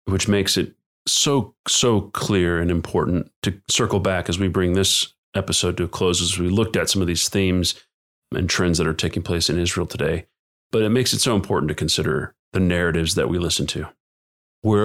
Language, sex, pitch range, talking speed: English, male, 85-100 Hz, 205 wpm